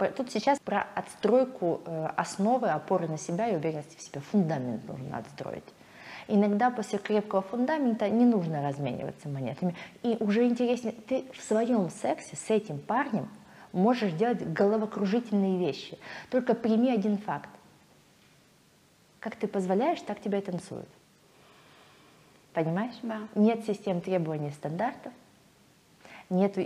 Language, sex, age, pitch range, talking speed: Russian, female, 30-49, 175-225 Hz, 120 wpm